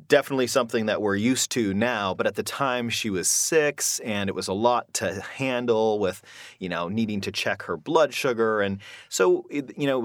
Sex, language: male, English